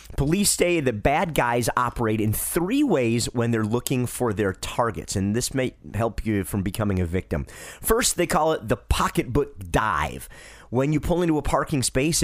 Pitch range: 90-125 Hz